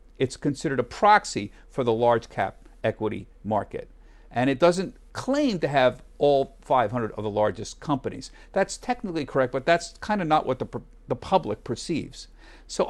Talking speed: 165 wpm